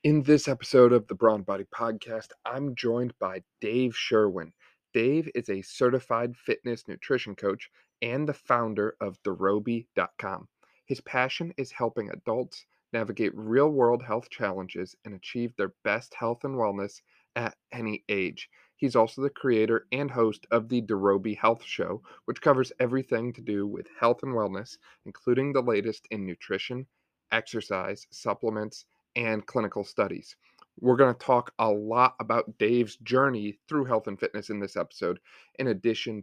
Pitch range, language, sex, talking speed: 105-125 Hz, English, male, 155 wpm